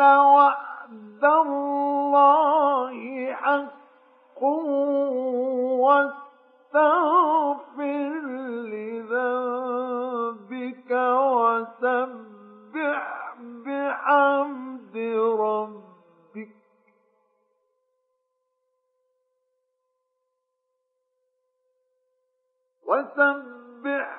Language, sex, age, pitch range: Arabic, male, 50-69, 240-365 Hz